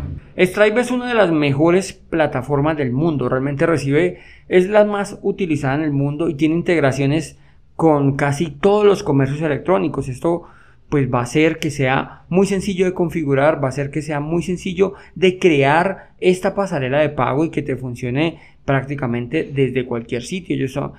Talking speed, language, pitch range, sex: 170 wpm, Spanish, 135-170 Hz, male